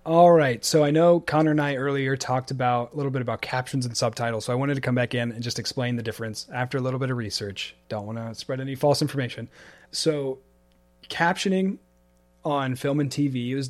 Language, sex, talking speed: English, male, 220 wpm